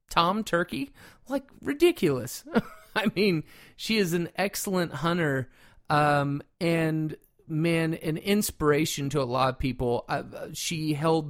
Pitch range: 135-170 Hz